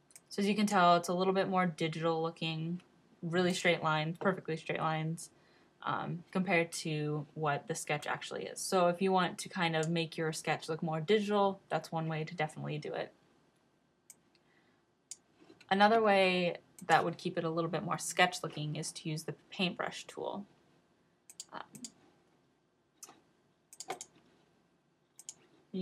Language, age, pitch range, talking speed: English, 10-29, 160-185 Hz, 150 wpm